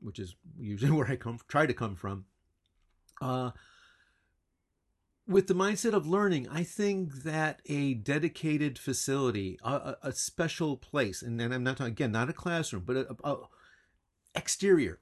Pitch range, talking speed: 105-145 Hz, 155 wpm